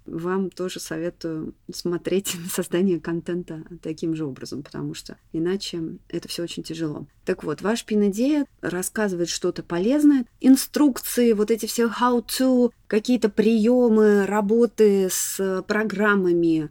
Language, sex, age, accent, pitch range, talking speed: Russian, female, 20-39, native, 175-215 Hz, 120 wpm